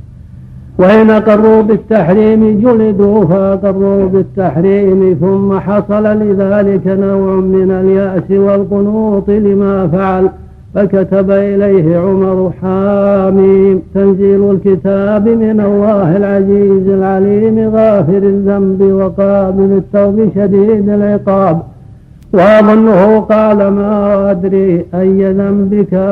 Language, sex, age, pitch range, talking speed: Arabic, male, 60-79, 190-200 Hz, 85 wpm